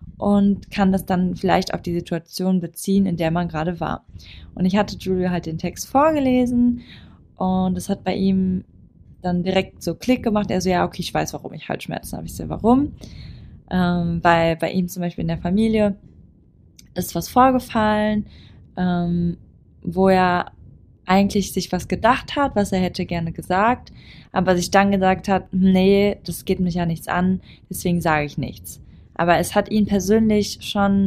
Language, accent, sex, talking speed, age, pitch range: German, German, female, 180 wpm, 20-39, 170-200 Hz